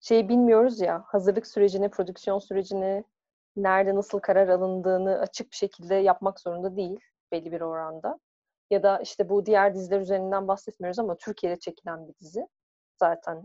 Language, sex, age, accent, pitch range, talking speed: Turkish, female, 30-49, native, 185-230 Hz, 150 wpm